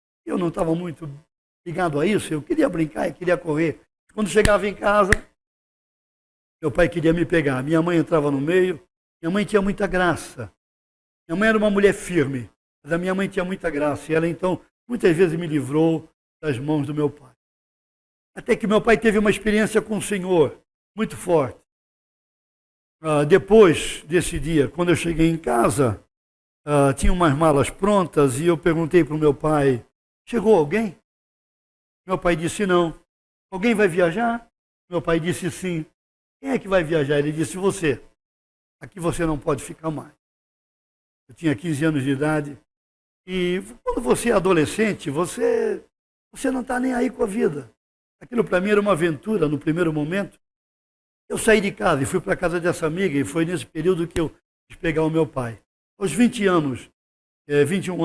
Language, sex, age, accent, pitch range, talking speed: Portuguese, male, 60-79, Brazilian, 150-195 Hz, 175 wpm